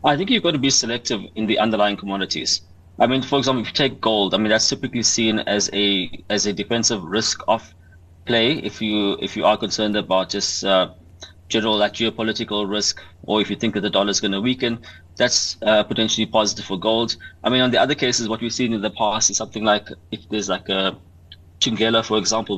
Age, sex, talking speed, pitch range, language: 20-39, male, 225 wpm, 100-115 Hz, English